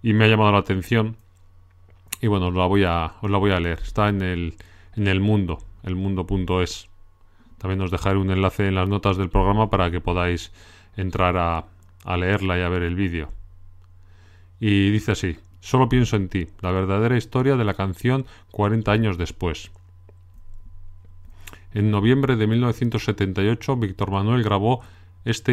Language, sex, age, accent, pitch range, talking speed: Spanish, male, 40-59, Spanish, 90-110 Hz, 165 wpm